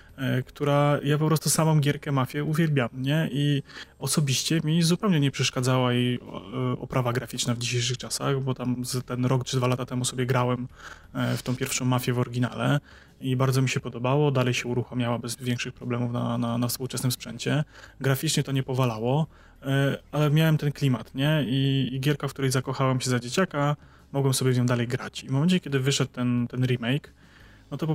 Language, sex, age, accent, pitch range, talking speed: Polish, male, 20-39, native, 125-145 Hz, 185 wpm